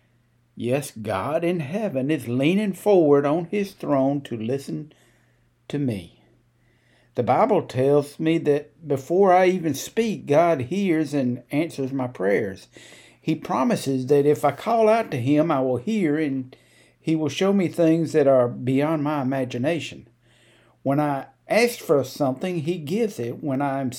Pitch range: 120-160 Hz